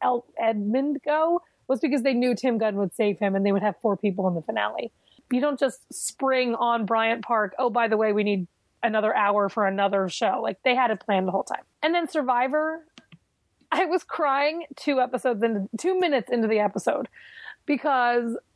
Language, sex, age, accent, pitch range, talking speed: English, female, 20-39, American, 220-270 Hz, 195 wpm